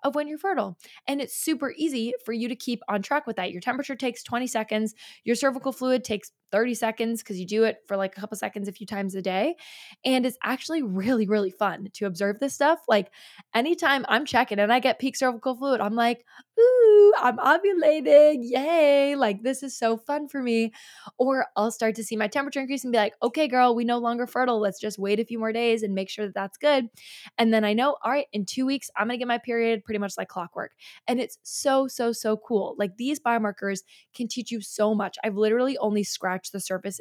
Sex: female